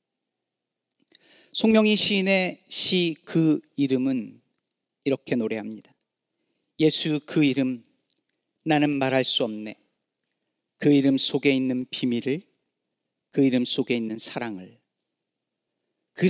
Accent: native